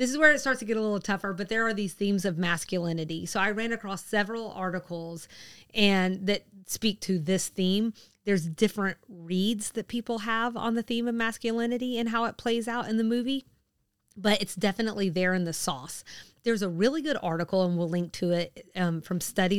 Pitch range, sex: 175-225 Hz, female